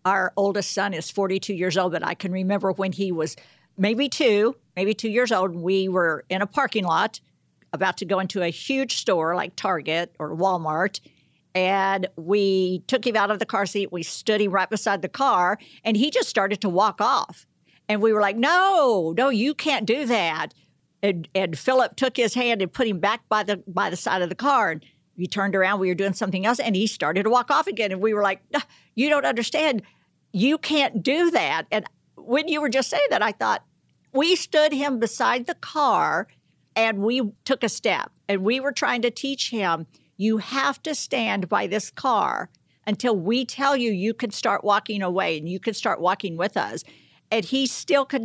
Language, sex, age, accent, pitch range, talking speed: English, female, 50-69, American, 190-255 Hz, 210 wpm